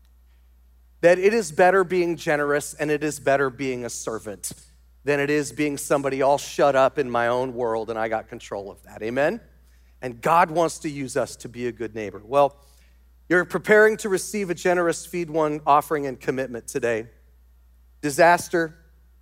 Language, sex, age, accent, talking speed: English, male, 40-59, American, 180 wpm